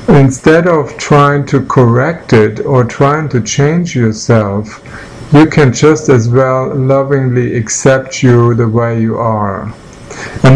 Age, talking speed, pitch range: 50-69, 135 wpm, 115-140 Hz